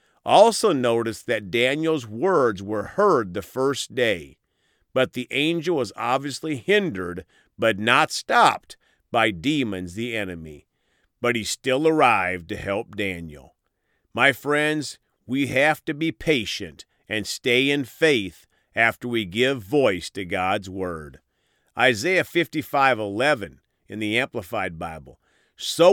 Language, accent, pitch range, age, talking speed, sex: English, American, 100-150 Hz, 40-59, 125 wpm, male